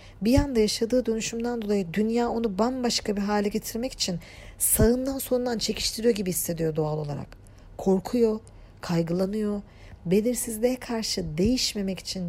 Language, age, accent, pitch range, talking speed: Turkish, 40-59, native, 165-245 Hz, 120 wpm